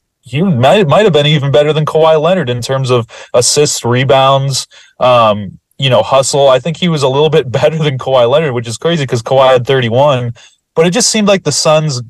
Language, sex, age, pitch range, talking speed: English, male, 20-39, 115-145 Hz, 220 wpm